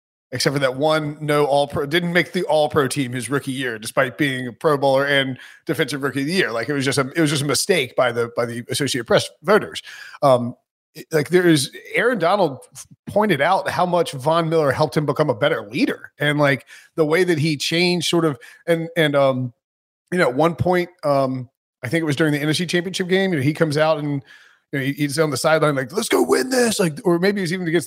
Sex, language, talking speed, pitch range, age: male, English, 235 wpm, 140-175 Hz, 30-49